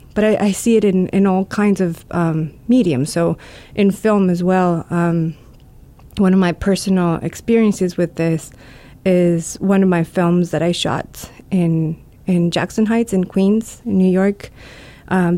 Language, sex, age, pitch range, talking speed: English, female, 20-39, 170-200 Hz, 170 wpm